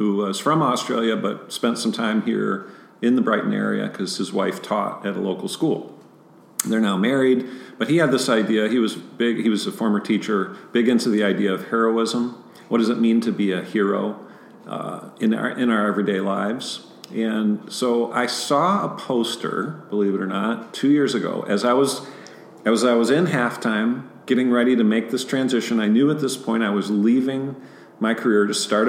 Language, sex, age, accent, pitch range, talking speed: English, male, 50-69, American, 100-120 Hz, 200 wpm